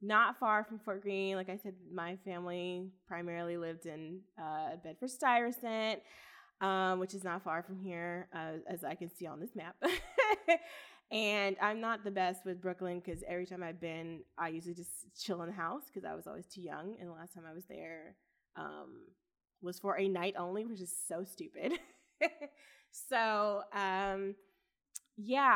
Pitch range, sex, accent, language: 175-235 Hz, female, American, English